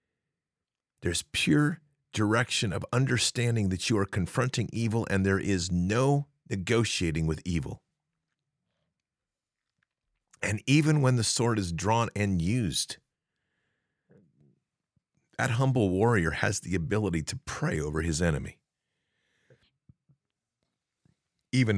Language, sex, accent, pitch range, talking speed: English, male, American, 95-130 Hz, 105 wpm